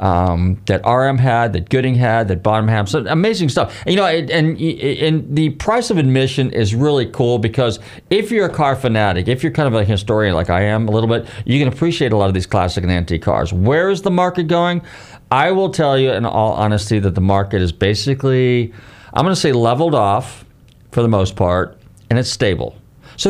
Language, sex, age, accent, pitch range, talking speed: English, male, 40-59, American, 100-135 Hz, 220 wpm